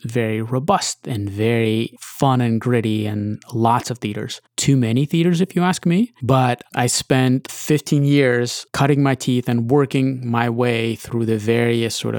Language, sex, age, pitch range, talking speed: English, male, 30-49, 115-145 Hz, 165 wpm